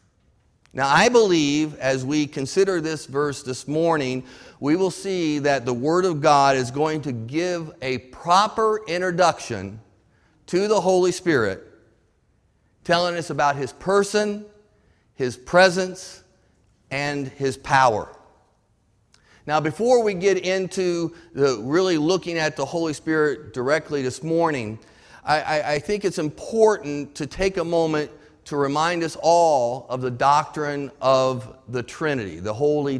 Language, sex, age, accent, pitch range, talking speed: English, male, 40-59, American, 130-175 Hz, 135 wpm